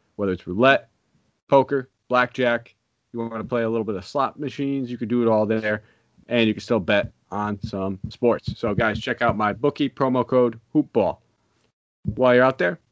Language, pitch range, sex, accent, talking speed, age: English, 105-130 Hz, male, American, 195 wpm, 30-49